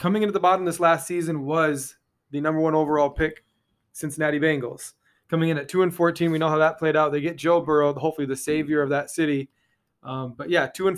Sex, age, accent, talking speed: male, 20-39, American, 230 wpm